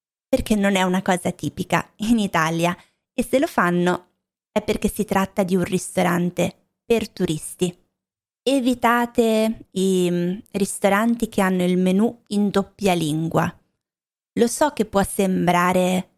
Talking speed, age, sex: 135 wpm, 20-39, female